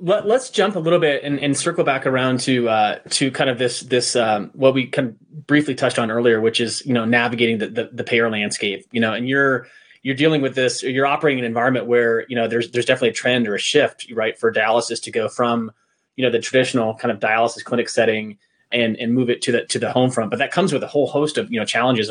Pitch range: 120-140 Hz